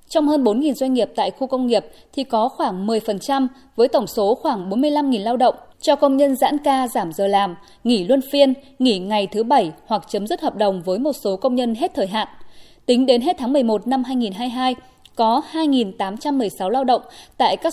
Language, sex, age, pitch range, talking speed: Vietnamese, female, 20-39, 215-280 Hz, 205 wpm